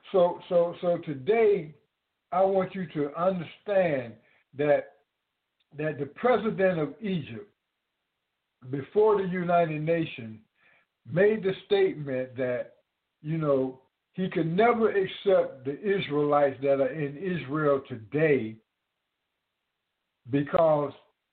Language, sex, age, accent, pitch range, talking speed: English, male, 60-79, American, 145-195 Hz, 105 wpm